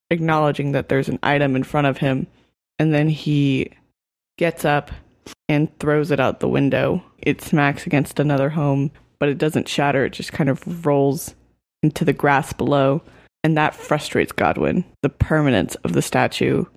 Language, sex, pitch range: English, female, 145-165 Hz